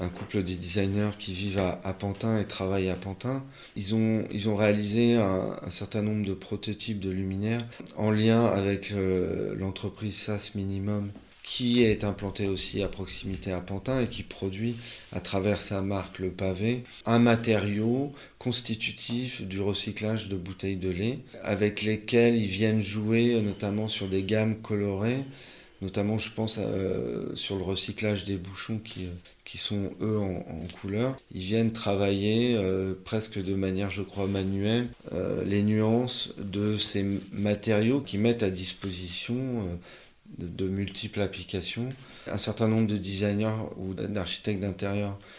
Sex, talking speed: male, 150 wpm